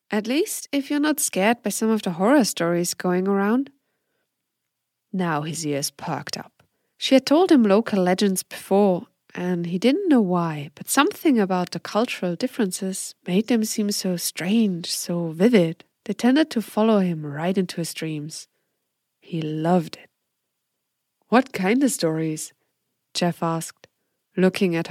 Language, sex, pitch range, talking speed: English, female, 175-235 Hz, 155 wpm